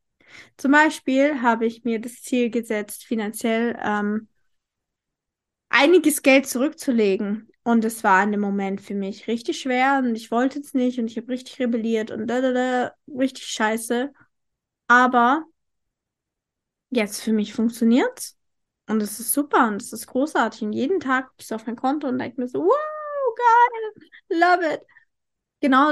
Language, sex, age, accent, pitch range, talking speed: English, female, 20-39, German, 225-280 Hz, 160 wpm